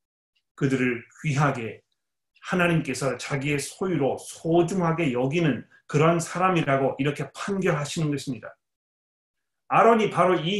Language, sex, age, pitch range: Korean, male, 30-49, 135-175 Hz